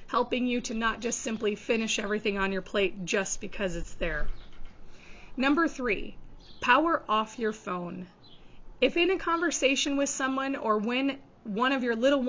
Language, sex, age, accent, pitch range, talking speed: English, female, 30-49, American, 205-255 Hz, 160 wpm